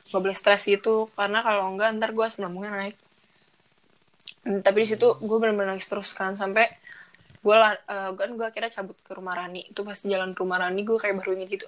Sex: female